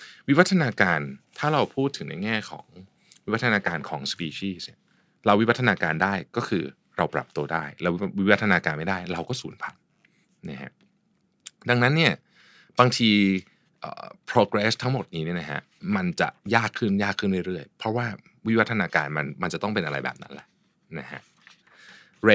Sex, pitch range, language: male, 85-120 Hz, Thai